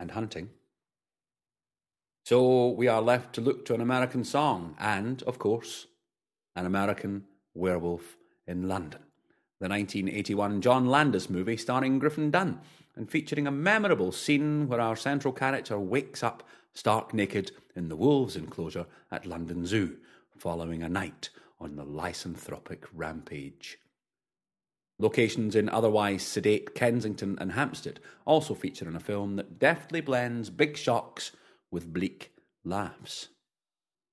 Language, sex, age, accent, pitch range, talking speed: English, male, 30-49, British, 95-125 Hz, 130 wpm